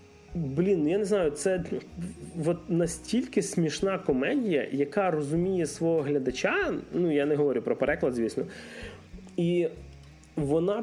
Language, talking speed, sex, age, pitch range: Ukrainian, 120 wpm, male, 20-39, 140-185 Hz